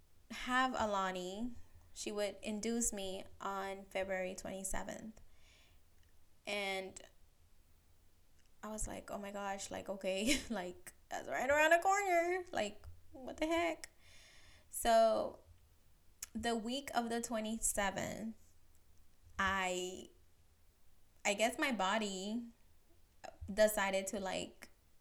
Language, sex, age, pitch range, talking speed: English, female, 20-39, 170-215 Hz, 100 wpm